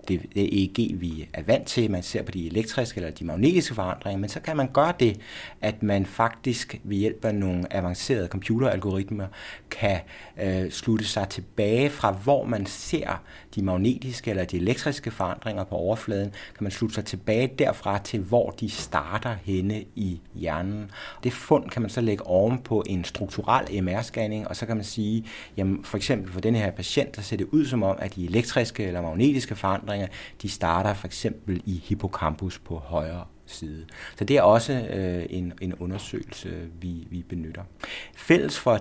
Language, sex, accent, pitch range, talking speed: Danish, male, native, 90-115 Hz, 175 wpm